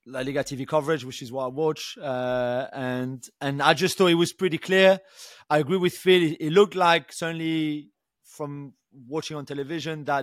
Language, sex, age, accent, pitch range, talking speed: English, male, 30-49, French, 150-195 Hz, 195 wpm